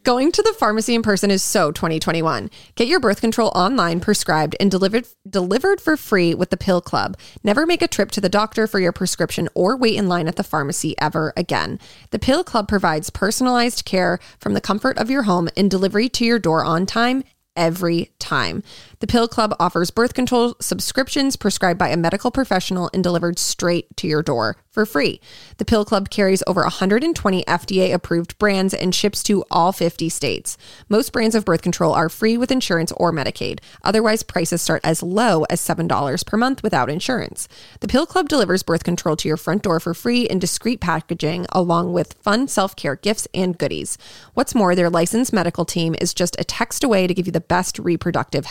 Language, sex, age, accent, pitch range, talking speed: English, female, 20-39, American, 170-220 Hz, 195 wpm